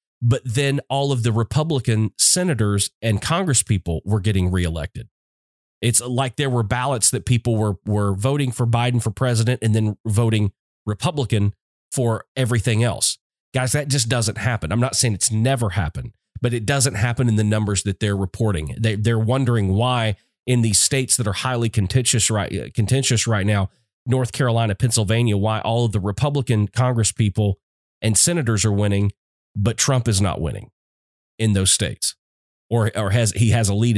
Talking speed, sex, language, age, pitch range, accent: 170 wpm, male, English, 30-49, 100-125 Hz, American